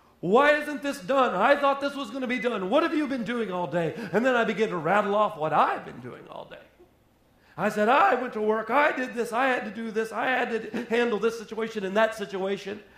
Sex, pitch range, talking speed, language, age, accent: male, 145-215 Hz, 255 wpm, English, 40-59, American